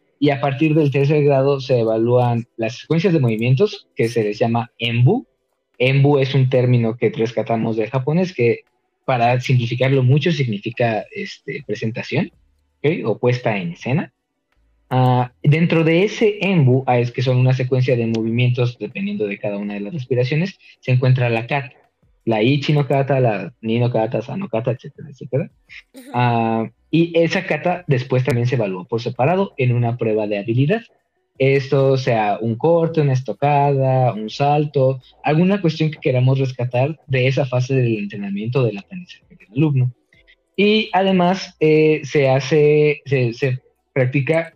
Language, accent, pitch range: Spanish, Mexican, 115-150 Hz